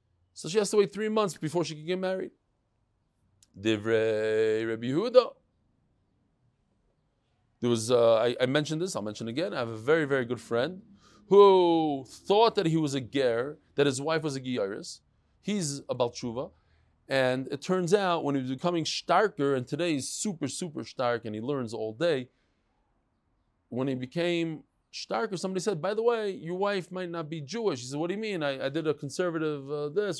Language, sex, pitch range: English, male, 120-185 Hz